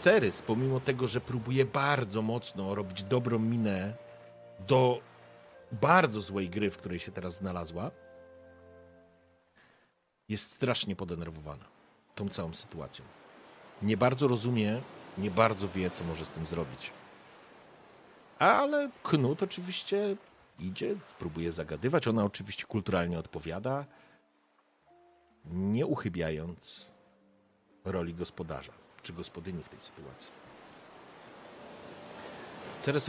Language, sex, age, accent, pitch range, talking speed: Polish, male, 40-59, native, 90-125 Hz, 100 wpm